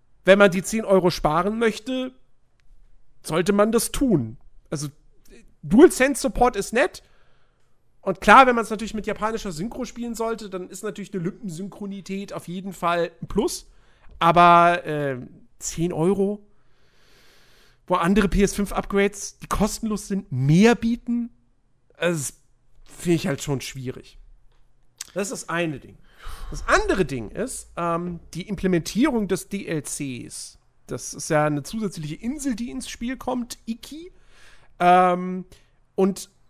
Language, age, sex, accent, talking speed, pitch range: German, 40-59, male, German, 140 wpm, 160-225 Hz